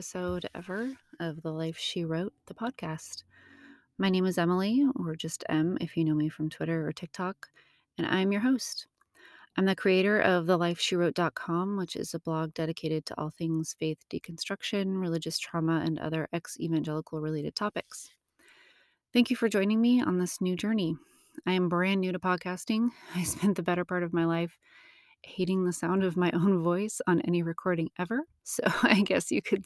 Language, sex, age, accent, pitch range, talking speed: English, female, 30-49, American, 165-195 Hz, 180 wpm